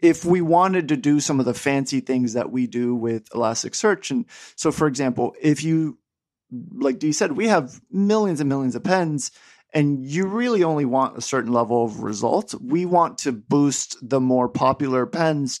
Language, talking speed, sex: English, 190 wpm, male